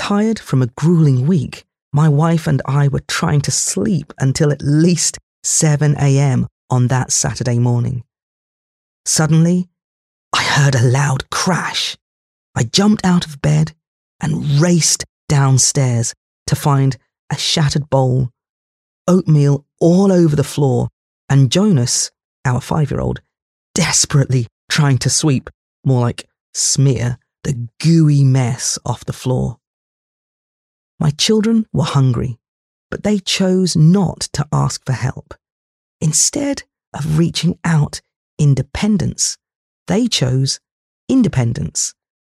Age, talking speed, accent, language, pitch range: 30-49, 115 wpm, British, English, 130-175 Hz